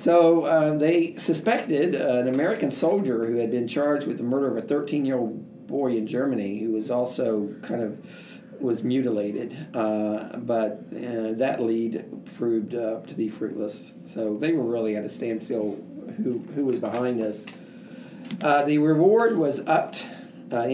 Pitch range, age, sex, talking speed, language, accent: 115-155 Hz, 50-69, male, 160 wpm, English, American